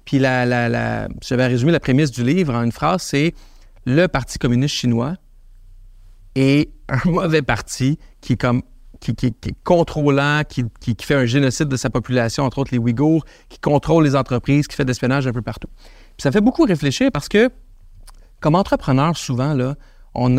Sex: male